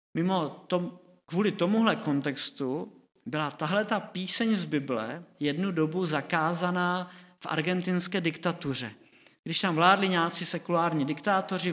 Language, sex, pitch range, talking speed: Czech, male, 150-180 Hz, 120 wpm